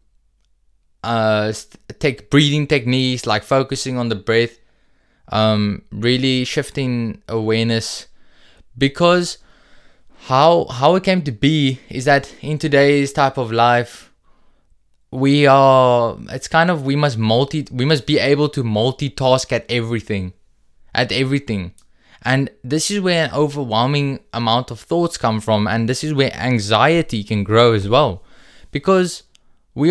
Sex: male